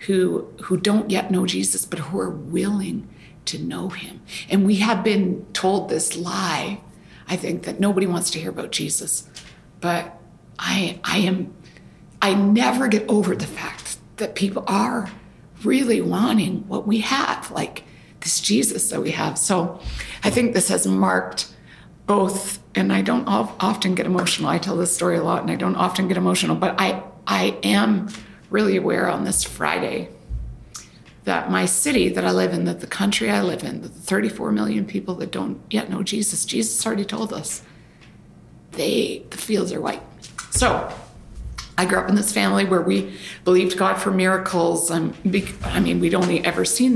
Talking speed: 180 wpm